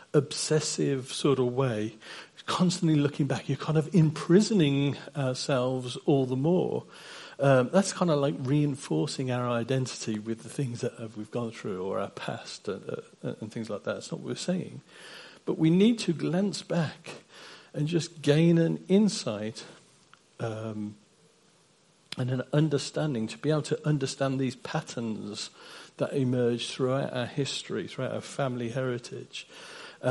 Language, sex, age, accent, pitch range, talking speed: English, male, 50-69, British, 125-155 Hz, 150 wpm